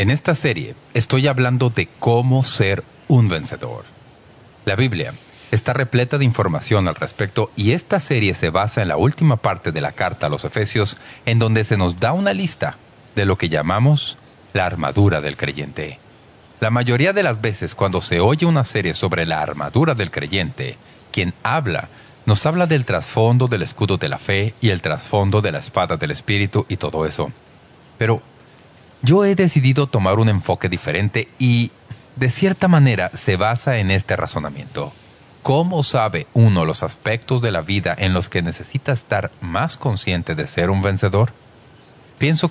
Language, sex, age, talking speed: English, male, 40-59, 170 wpm